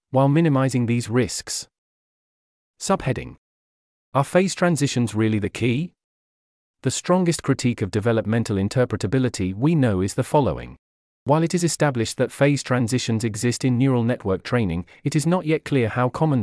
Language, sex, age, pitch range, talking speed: English, male, 40-59, 110-140 Hz, 150 wpm